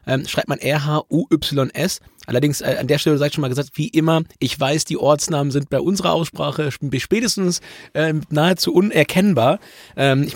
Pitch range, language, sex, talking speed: 135-160 Hz, German, male, 175 wpm